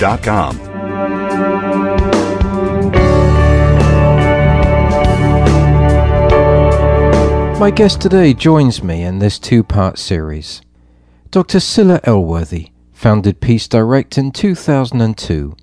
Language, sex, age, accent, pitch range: English, male, 50-69, British, 75-120 Hz